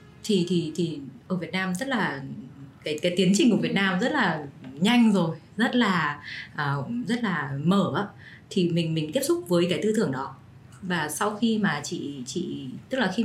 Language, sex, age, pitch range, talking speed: Vietnamese, female, 20-39, 145-200 Hz, 200 wpm